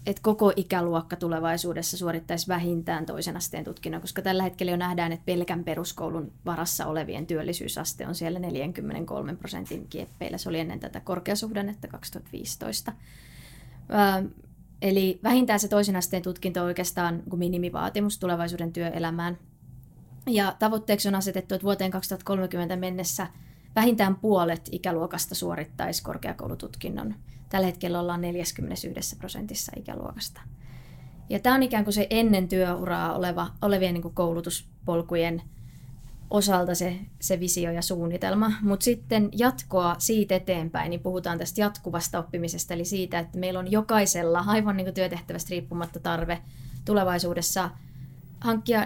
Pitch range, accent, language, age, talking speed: 170-195 Hz, native, Finnish, 20-39, 125 wpm